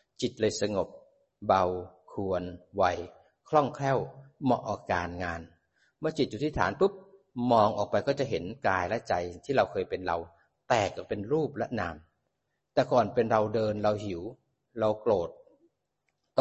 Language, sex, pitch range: Thai, male, 95-130 Hz